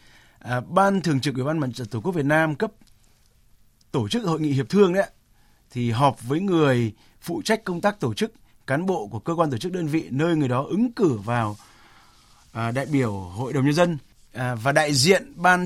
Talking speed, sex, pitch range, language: 220 wpm, male, 130-175 Hz, Vietnamese